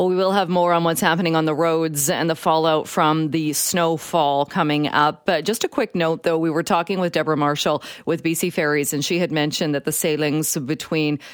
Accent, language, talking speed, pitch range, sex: American, English, 220 wpm, 155-195 Hz, female